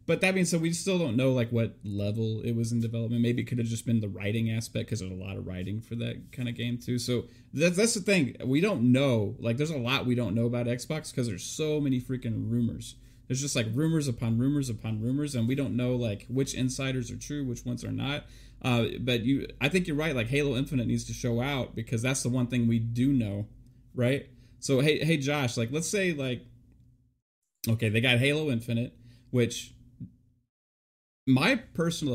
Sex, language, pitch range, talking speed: male, English, 115-135 Hz, 220 wpm